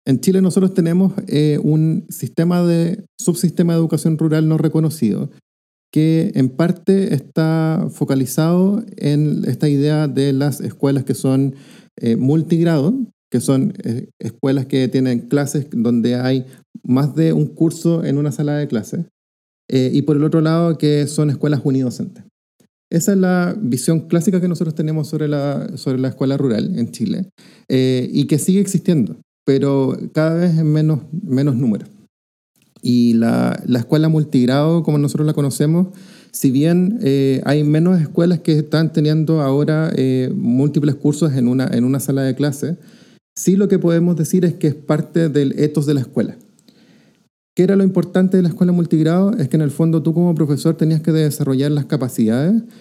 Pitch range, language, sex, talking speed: 135-175 Hz, Spanish, male, 170 wpm